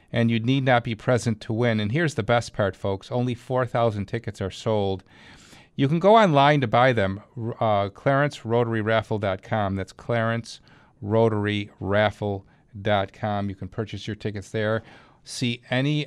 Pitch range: 105-135 Hz